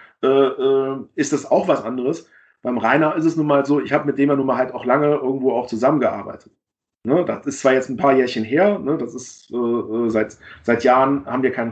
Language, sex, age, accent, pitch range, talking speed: German, male, 40-59, German, 125-155 Hz, 210 wpm